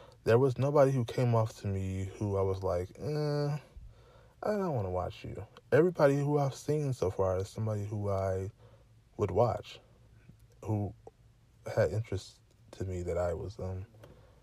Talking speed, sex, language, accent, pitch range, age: 165 wpm, male, English, American, 105-125 Hz, 20-39